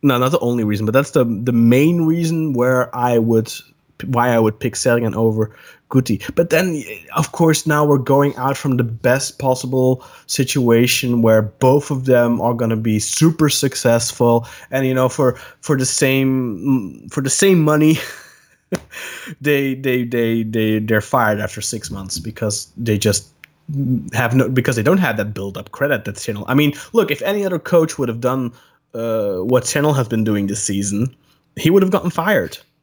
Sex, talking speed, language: male, 185 wpm, English